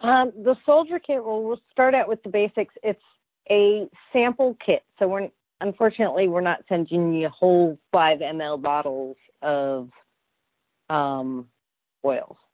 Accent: American